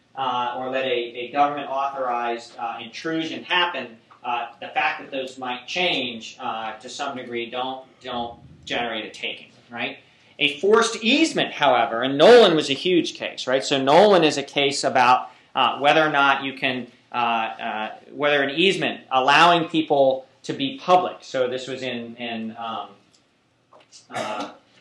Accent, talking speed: American, 160 wpm